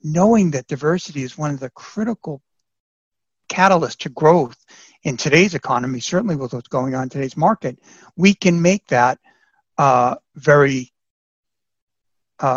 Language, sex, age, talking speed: English, male, 60-79, 140 wpm